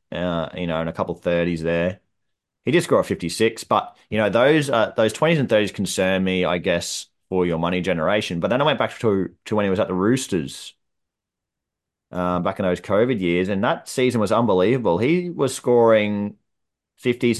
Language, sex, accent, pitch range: English, male, Australian, 90-110 Hz